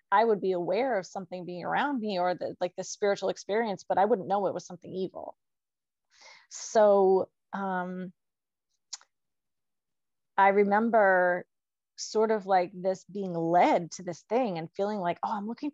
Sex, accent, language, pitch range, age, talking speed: female, American, English, 190-235 Hz, 30-49, 160 wpm